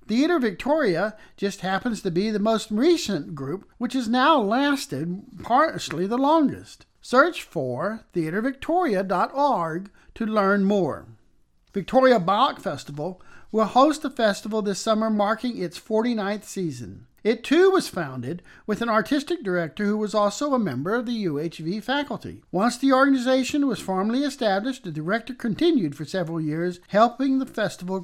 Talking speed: 145 wpm